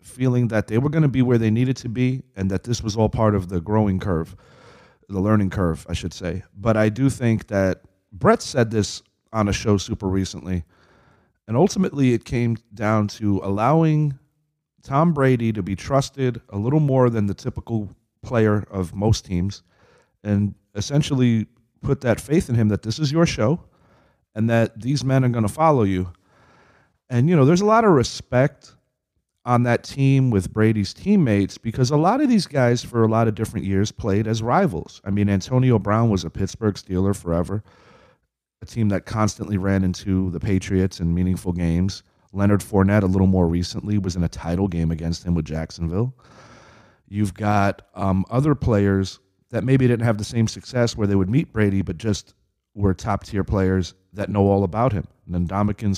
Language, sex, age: English, male, 40-59